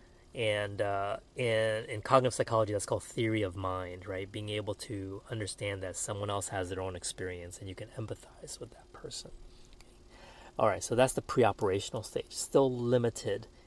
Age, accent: 30-49, American